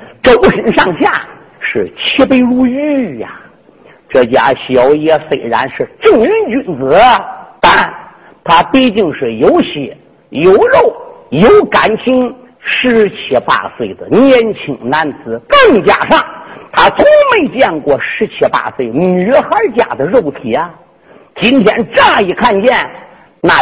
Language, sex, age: Chinese, male, 50-69